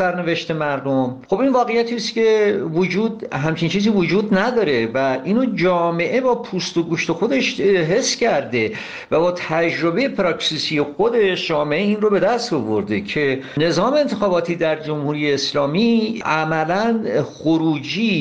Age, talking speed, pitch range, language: 50-69, 135 wpm, 135-210 Hz, Persian